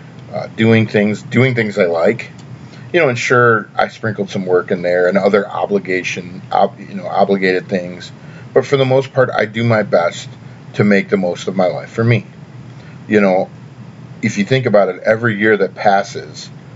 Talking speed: 190 wpm